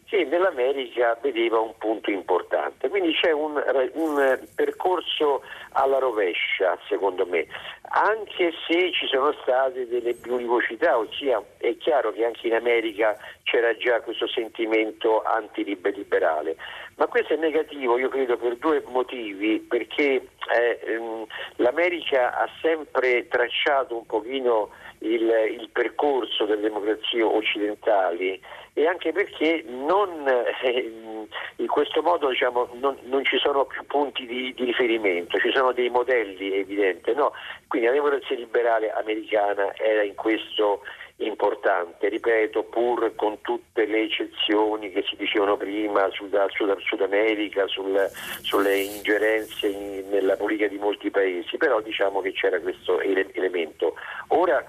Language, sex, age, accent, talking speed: Italian, male, 50-69, native, 135 wpm